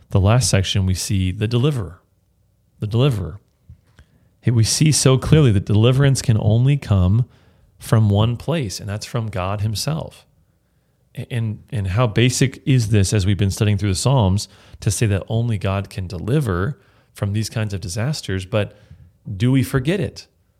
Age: 30-49